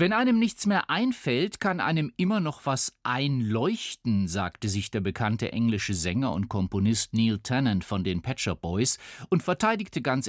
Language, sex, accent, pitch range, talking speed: German, male, German, 100-140 Hz, 165 wpm